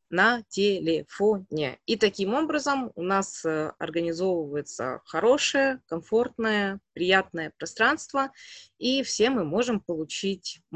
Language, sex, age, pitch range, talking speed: Russian, female, 20-39, 165-215 Hz, 95 wpm